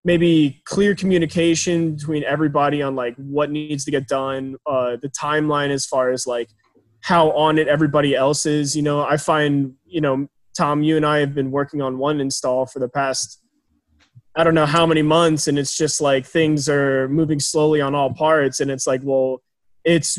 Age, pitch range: 20-39, 135-155 Hz